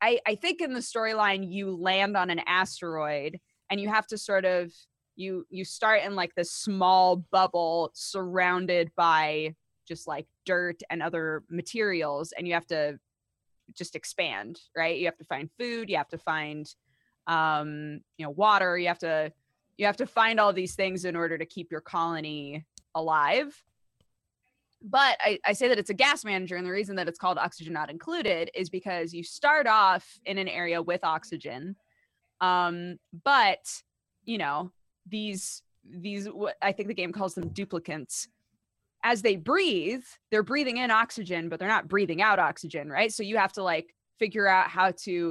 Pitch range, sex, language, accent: 170-205 Hz, female, English, American